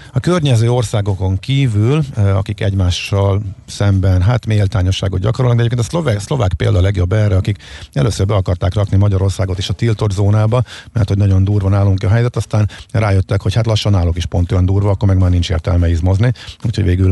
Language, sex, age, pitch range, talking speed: Hungarian, male, 50-69, 95-110 Hz, 185 wpm